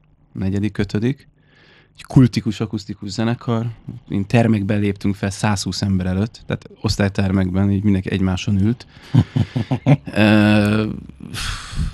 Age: 20-39